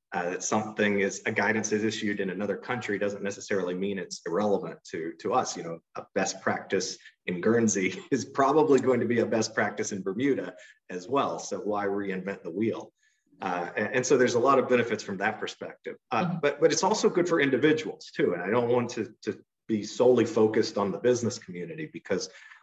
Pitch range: 95-115 Hz